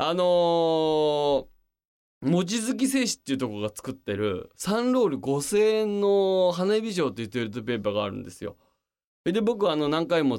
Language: Japanese